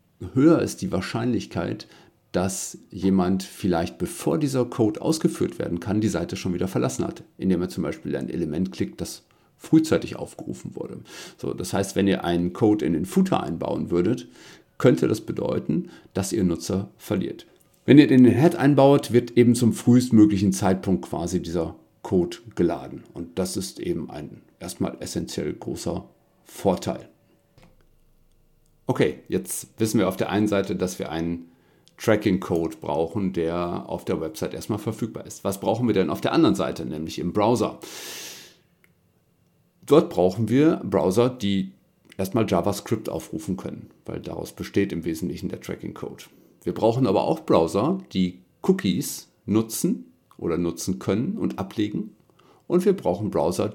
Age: 50-69